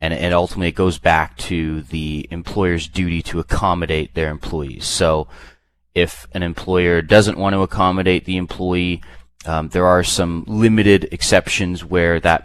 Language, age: English, 30-49